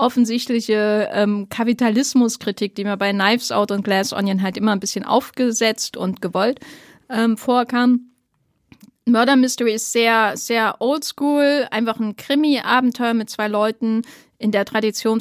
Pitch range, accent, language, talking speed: 205-250 Hz, German, German, 140 wpm